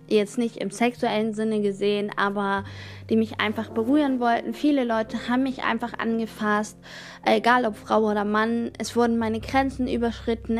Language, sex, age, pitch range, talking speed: German, female, 20-39, 200-245 Hz, 160 wpm